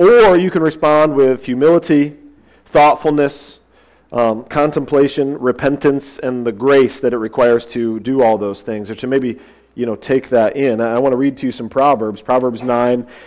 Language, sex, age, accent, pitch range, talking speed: English, male, 40-59, American, 125-150 Hz, 175 wpm